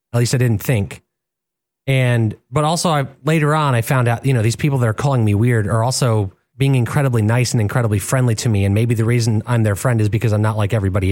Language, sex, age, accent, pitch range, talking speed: English, male, 30-49, American, 115-140 Hz, 250 wpm